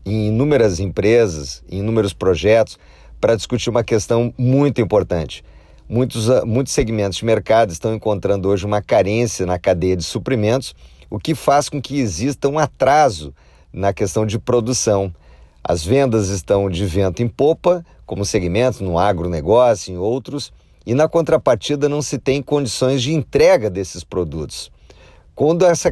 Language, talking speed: Portuguese, 150 wpm